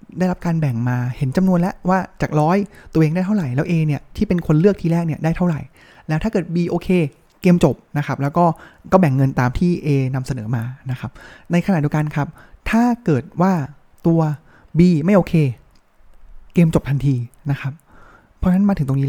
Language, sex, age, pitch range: Thai, male, 20-39, 140-180 Hz